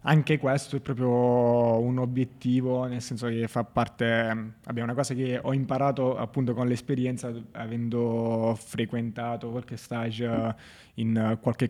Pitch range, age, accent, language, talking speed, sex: 120-135 Hz, 20-39, native, Italian, 135 wpm, male